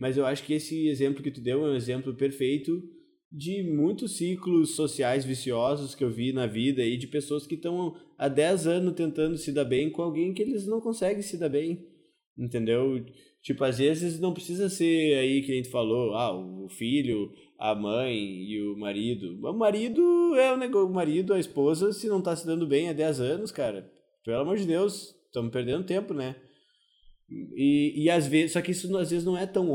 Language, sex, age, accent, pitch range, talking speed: Portuguese, male, 20-39, Brazilian, 130-170 Hz, 210 wpm